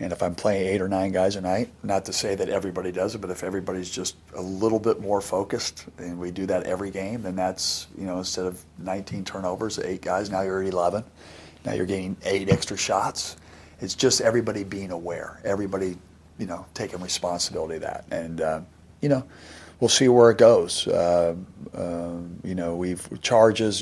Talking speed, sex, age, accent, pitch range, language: 195 wpm, male, 50-69, American, 85-100 Hz, English